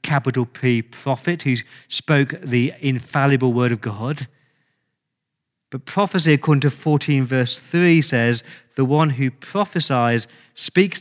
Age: 40-59